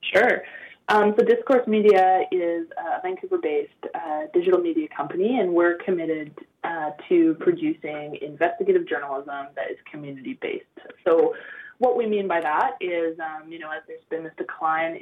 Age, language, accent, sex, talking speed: 20-39, English, American, female, 150 wpm